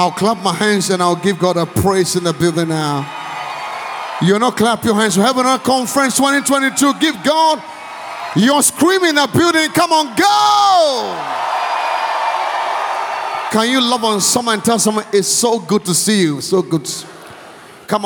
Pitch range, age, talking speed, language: 175-245 Hz, 30-49, 170 wpm, English